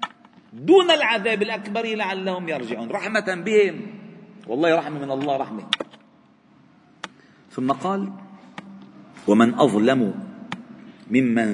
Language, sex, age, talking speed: Arabic, male, 50-69, 90 wpm